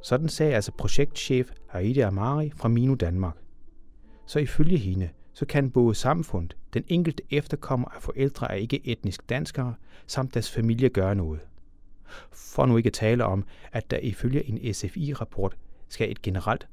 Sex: male